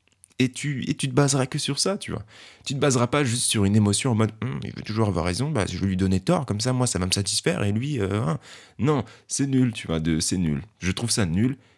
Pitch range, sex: 95-130 Hz, male